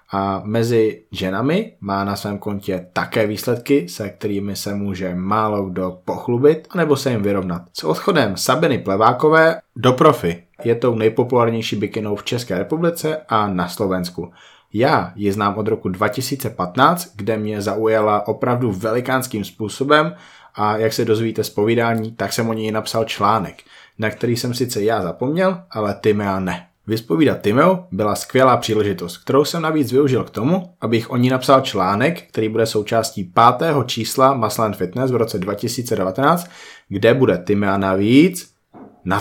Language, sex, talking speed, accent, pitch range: Czech, male, 155 wpm, native, 100-130 Hz